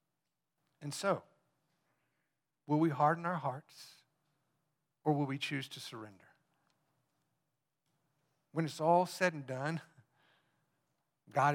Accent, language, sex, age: American, English, male, 60-79